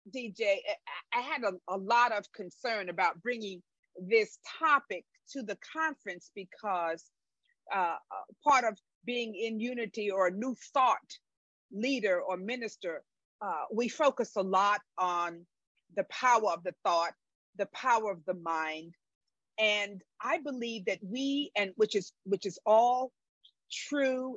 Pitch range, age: 195-255 Hz, 40-59